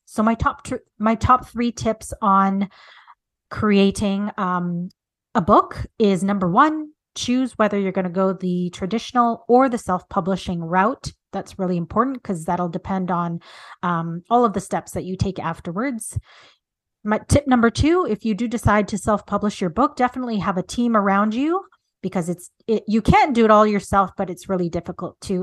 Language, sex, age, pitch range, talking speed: English, female, 30-49, 185-225 Hz, 180 wpm